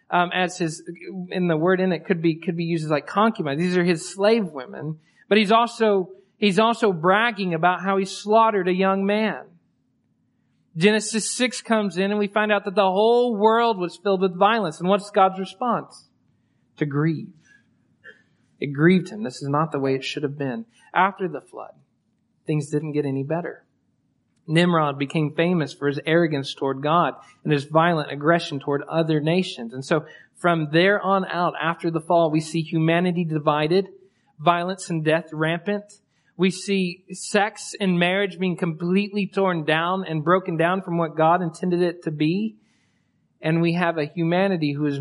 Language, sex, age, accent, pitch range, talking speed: English, male, 40-59, American, 155-195 Hz, 180 wpm